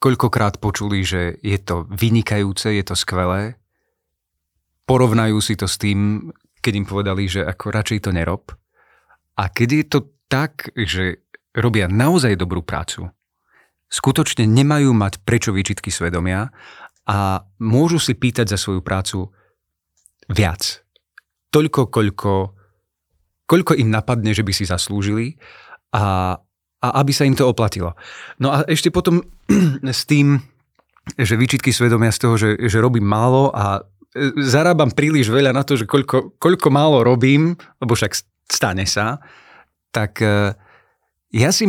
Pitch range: 95-130 Hz